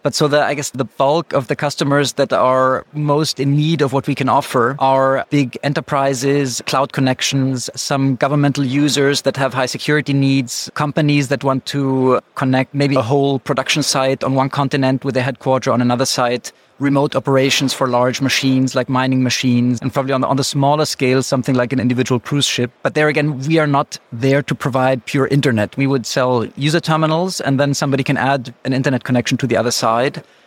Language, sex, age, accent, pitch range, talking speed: English, male, 30-49, German, 130-145 Hz, 200 wpm